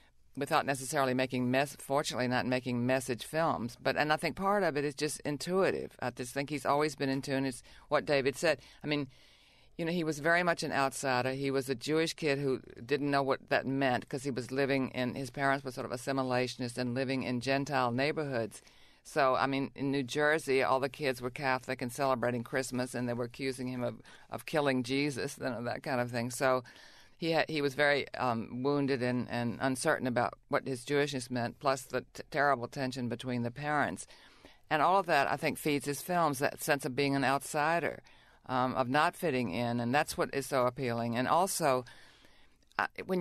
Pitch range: 125-150 Hz